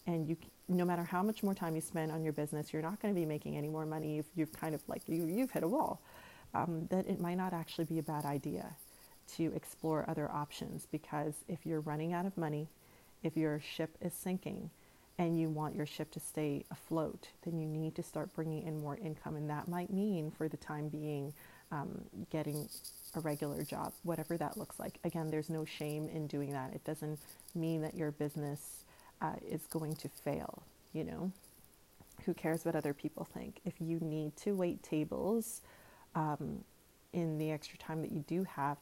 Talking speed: 205 wpm